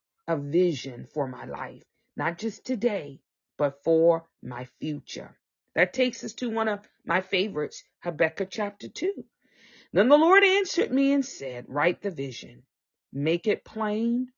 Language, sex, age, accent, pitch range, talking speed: English, female, 40-59, American, 160-235 Hz, 150 wpm